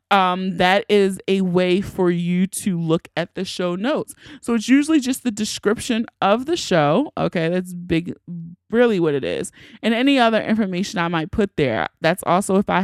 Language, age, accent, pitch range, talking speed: English, 20-39, American, 175-235 Hz, 190 wpm